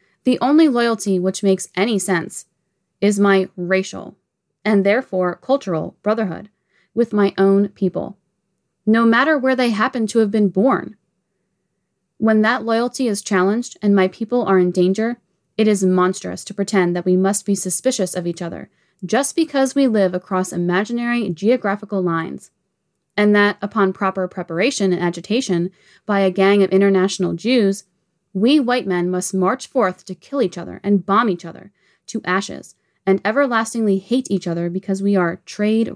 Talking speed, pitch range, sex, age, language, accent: 160 wpm, 185-215 Hz, female, 20-39, English, American